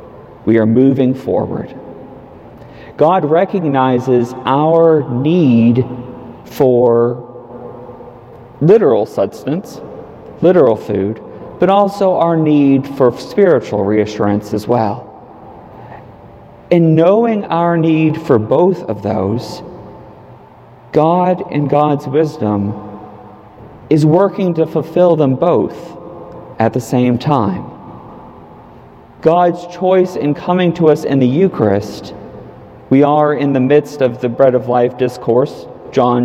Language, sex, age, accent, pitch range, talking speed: English, male, 50-69, American, 115-150 Hz, 110 wpm